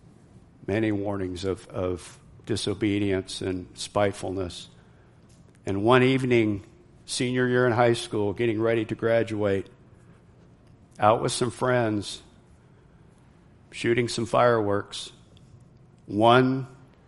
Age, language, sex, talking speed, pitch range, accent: 50-69, English, male, 95 wpm, 100-120 Hz, American